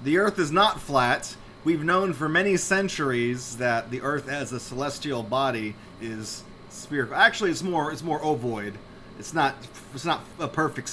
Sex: male